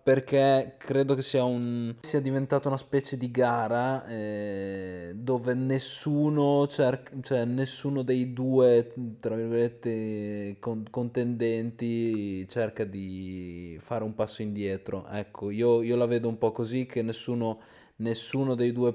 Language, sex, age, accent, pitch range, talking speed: Italian, male, 20-39, native, 110-135 Hz, 130 wpm